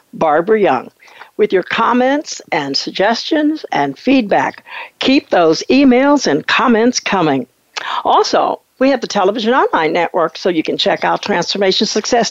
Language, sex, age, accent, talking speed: English, female, 60-79, American, 140 wpm